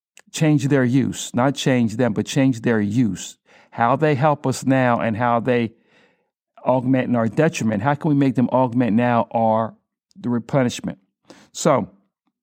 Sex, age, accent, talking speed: male, 60-79, American, 160 wpm